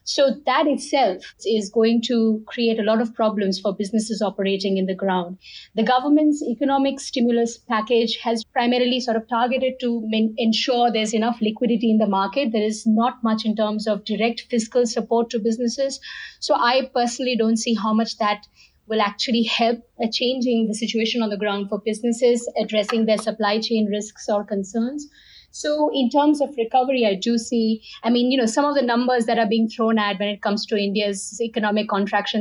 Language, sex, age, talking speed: English, female, 50-69, 185 wpm